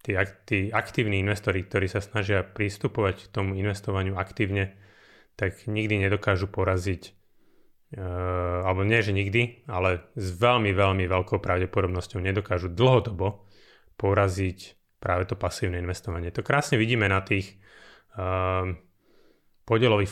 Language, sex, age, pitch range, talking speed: Slovak, male, 30-49, 95-110 Hz, 120 wpm